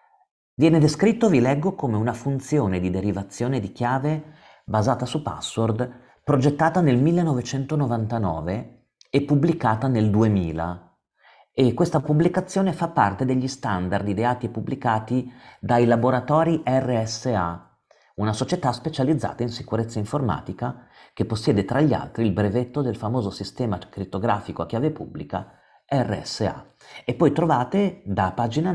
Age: 40-59